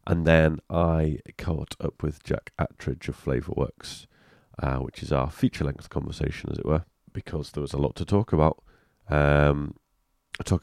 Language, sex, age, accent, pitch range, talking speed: English, male, 30-49, British, 75-95 Hz, 170 wpm